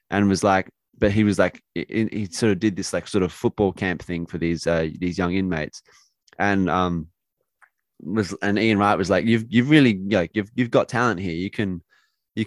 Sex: male